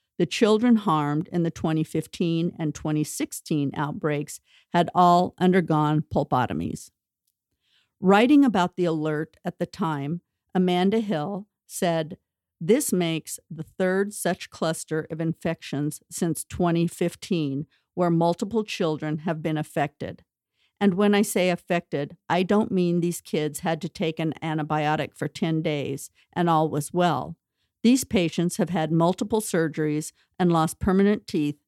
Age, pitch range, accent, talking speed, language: 50-69, 155-195 Hz, American, 135 wpm, English